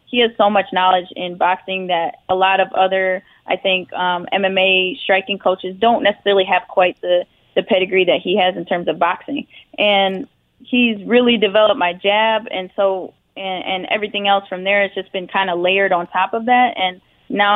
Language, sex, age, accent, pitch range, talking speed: English, female, 20-39, American, 185-210 Hz, 200 wpm